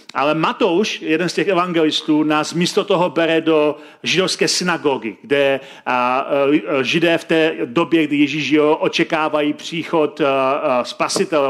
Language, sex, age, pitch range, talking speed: Czech, male, 40-59, 150-170 Hz, 120 wpm